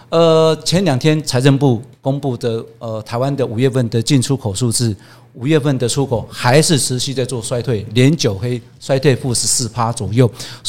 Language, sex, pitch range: Chinese, male, 120-145 Hz